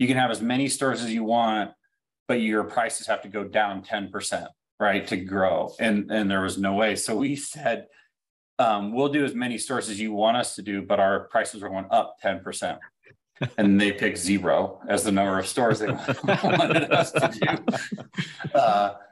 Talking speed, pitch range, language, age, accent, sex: 205 wpm, 105-120 Hz, English, 30-49, American, male